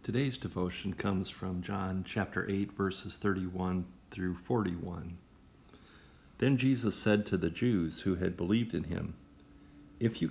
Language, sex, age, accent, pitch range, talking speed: English, male, 50-69, American, 85-110 Hz, 140 wpm